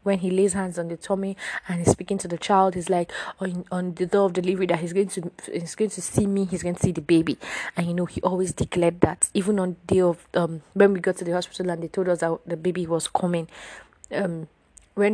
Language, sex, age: English, female, 20-39